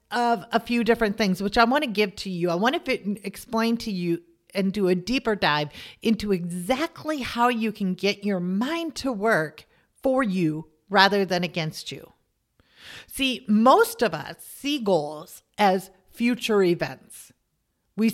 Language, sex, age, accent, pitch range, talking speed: English, female, 50-69, American, 175-230 Hz, 160 wpm